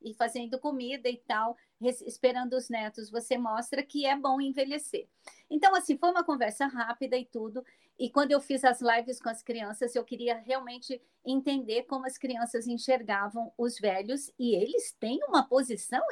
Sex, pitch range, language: female, 230-275 Hz, Portuguese